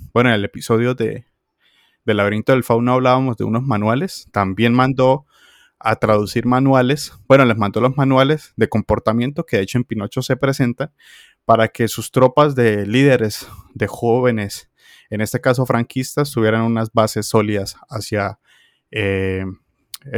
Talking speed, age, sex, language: 150 wpm, 20-39, male, Spanish